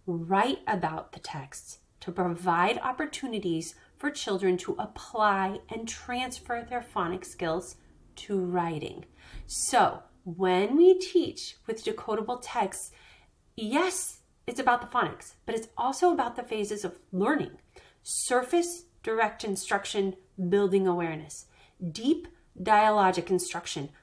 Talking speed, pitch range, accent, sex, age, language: 115 wpm, 190-260 Hz, American, female, 30-49, English